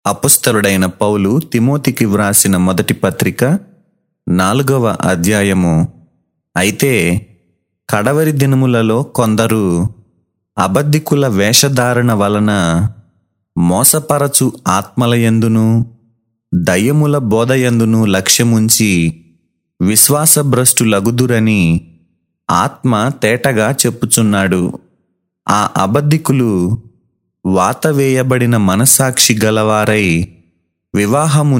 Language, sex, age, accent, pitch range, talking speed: Telugu, male, 30-49, native, 100-130 Hz, 60 wpm